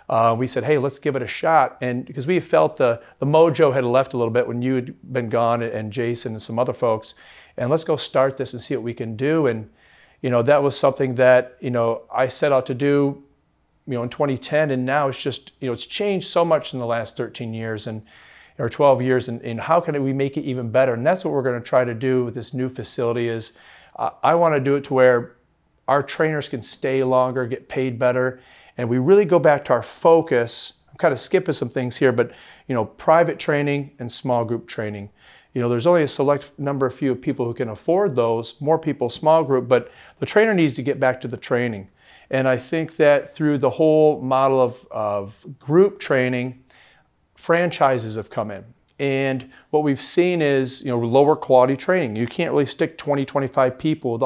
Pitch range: 120-145 Hz